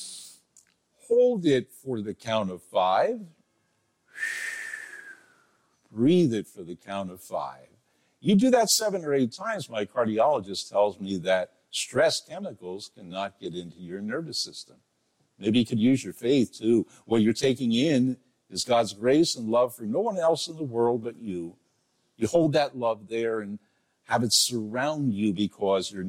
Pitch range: 105-155 Hz